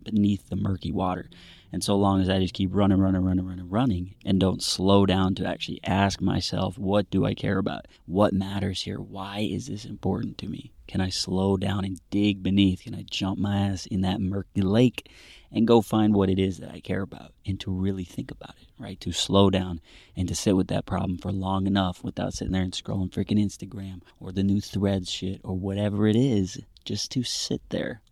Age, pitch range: 30-49, 95-105 Hz